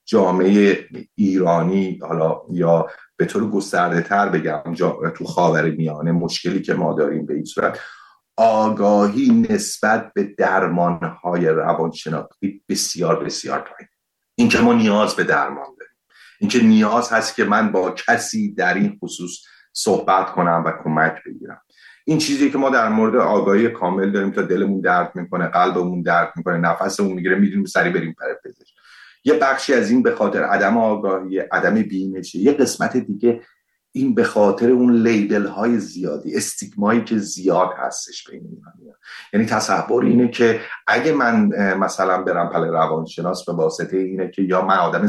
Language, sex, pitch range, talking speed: Persian, male, 90-135 Hz, 150 wpm